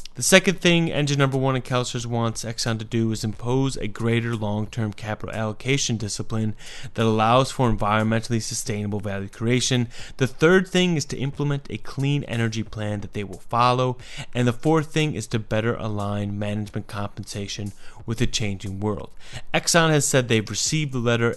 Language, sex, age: English, male, 20-39